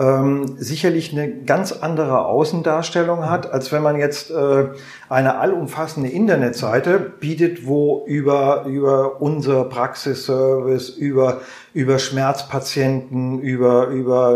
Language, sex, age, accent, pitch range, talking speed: German, male, 40-59, German, 125-155 Hz, 110 wpm